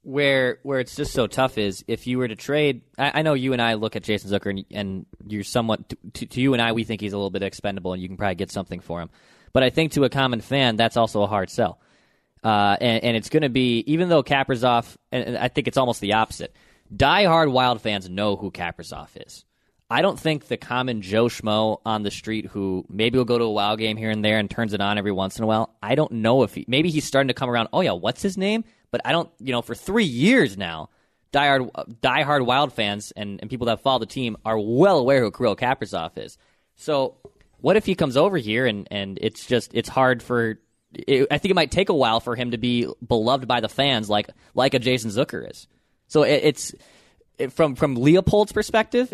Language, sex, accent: English, male, American